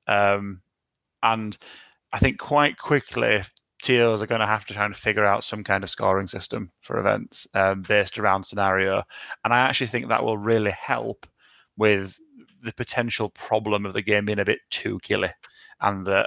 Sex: male